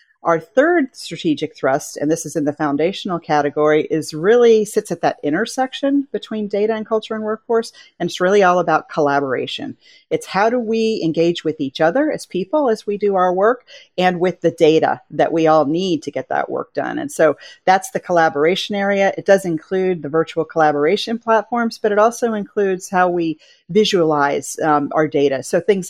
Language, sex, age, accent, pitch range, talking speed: English, female, 40-59, American, 155-215 Hz, 190 wpm